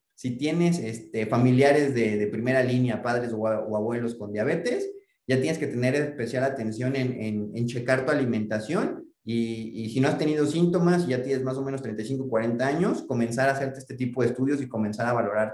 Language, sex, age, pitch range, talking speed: Spanish, male, 30-49, 115-145 Hz, 205 wpm